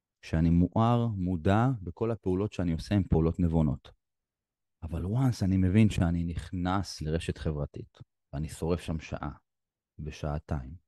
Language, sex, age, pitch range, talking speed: Hebrew, male, 30-49, 80-105 Hz, 125 wpm